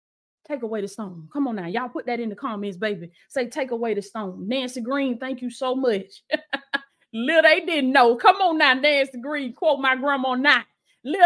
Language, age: English, 30-49